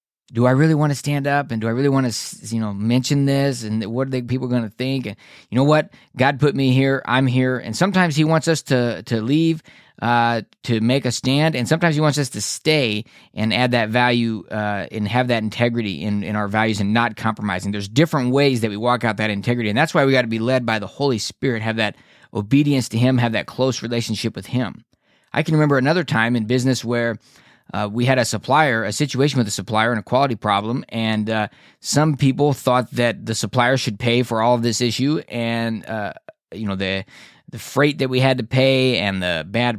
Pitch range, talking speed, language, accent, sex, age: 110-135 Hz, 235 wpm, English, American, male, 20-39